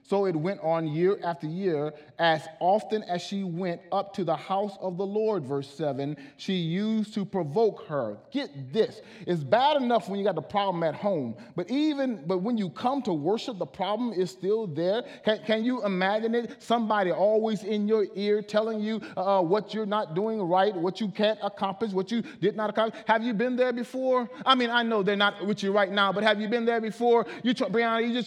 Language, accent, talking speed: English, American, 220 wpm